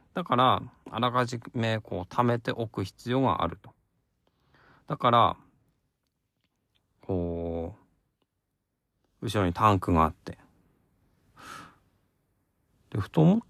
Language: Japanese